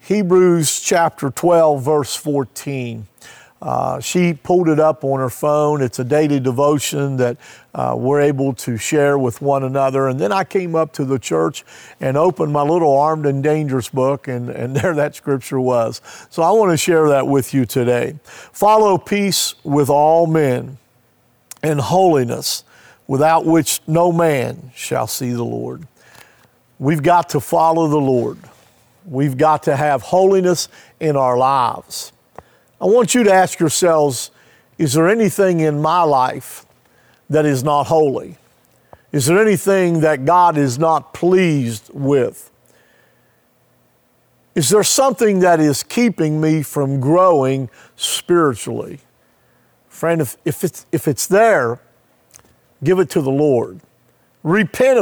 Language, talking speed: English, 145 wpm